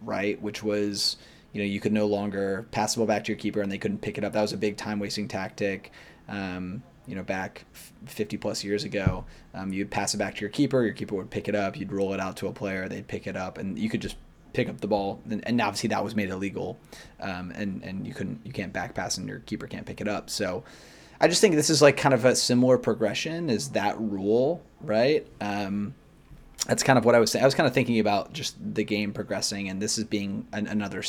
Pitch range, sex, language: 100-110 Hz, male, English